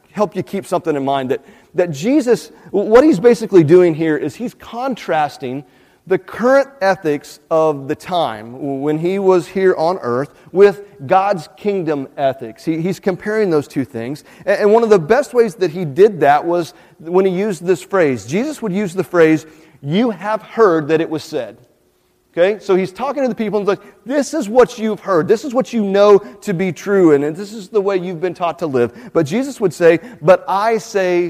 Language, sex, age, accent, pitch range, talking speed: English, male, 40-59, American, 150-205 Hz, 205 wpm